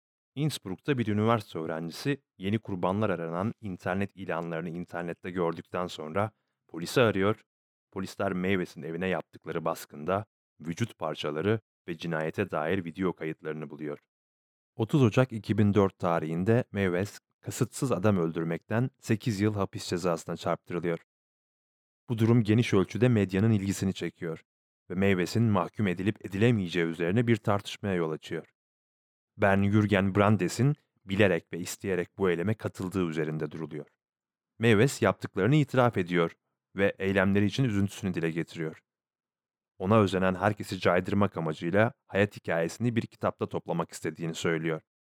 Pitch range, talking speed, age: 85-110 Hz, 120 wpm, 30-49